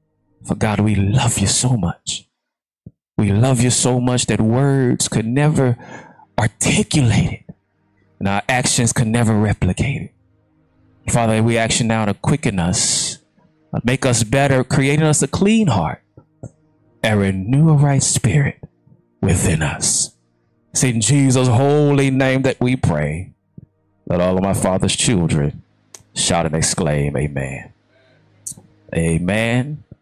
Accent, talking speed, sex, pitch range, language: American, 130 wpm, male, 95-135 Hz, English